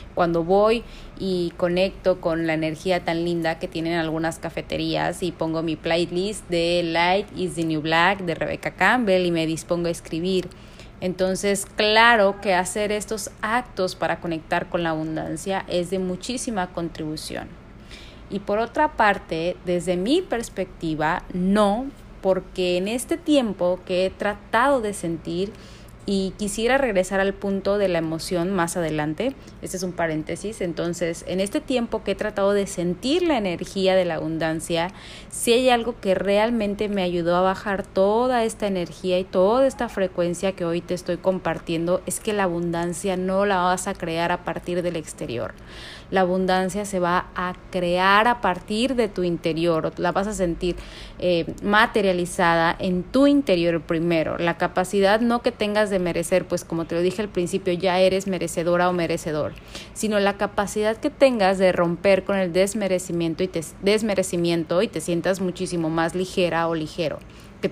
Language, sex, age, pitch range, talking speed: Spanish, female, 30-49, 170-200 Hz, 165 wpm